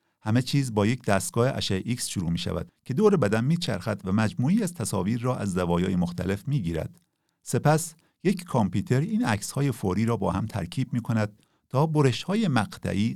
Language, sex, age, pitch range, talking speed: Persian, male, 50-69, 95-140 Hz, 185 wpm